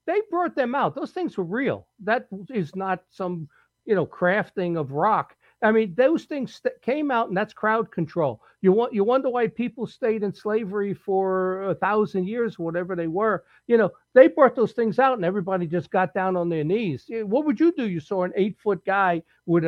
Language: English